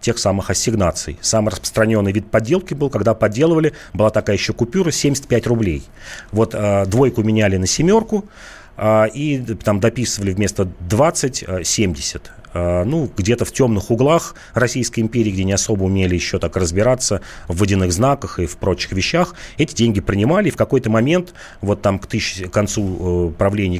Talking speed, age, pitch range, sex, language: 155 wpm, 30-49, 95-120 Hz, male, Russian